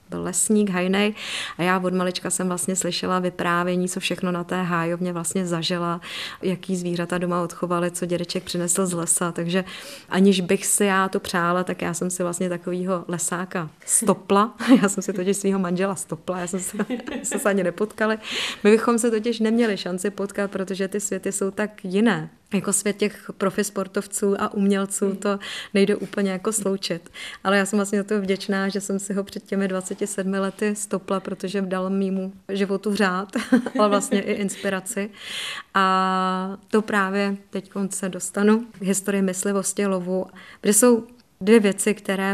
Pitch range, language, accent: 185-205 Hz, Czech, native